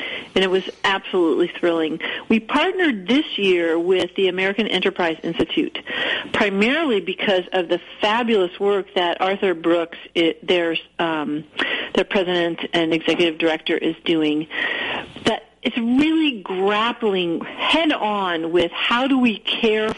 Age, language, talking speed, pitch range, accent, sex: 40-59, English, 130 wpm, 170-220 Hz, American, female